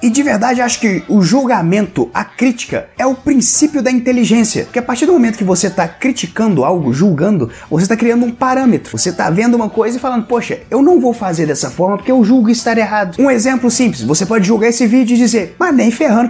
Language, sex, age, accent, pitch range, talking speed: Portuguese, male, 20-39, Brazilian, 210-260 Hz, 230 wpm